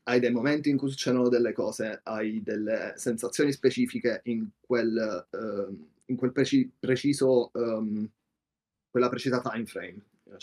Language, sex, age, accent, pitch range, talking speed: Italian, male, 20-39, native, 120-135 Hz, 150 wpm